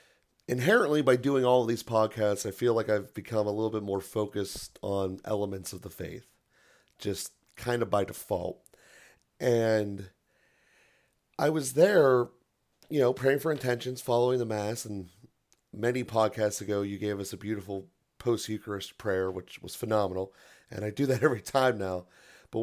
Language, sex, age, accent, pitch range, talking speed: English, male, 30-49, American, 105-135 Hz, 160 wpm